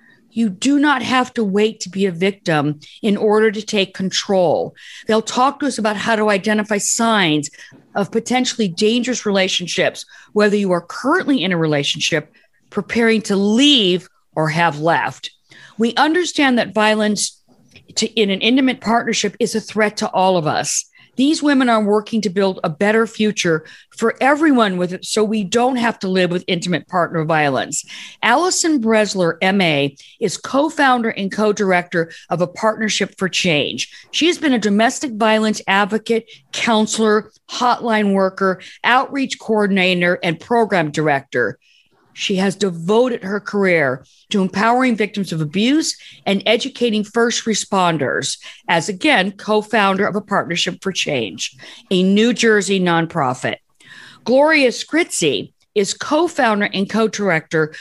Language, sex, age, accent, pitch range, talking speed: English, female, 50-69, American, 185-230 Hz, 140 wpm